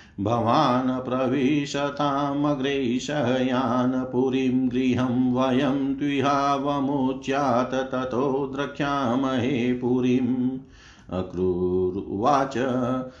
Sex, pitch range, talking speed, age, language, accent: male, 125-140 Hz, 45 wpm, 50-69, Hindi, native